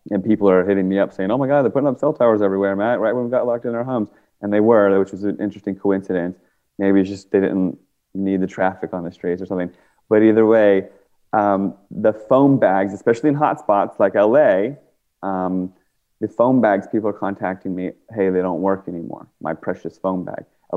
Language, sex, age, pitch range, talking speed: English, male, 30-49, 90-105 Hz, 220 wpm